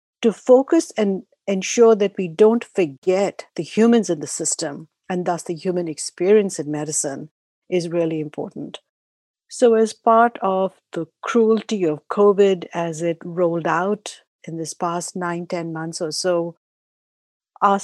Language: English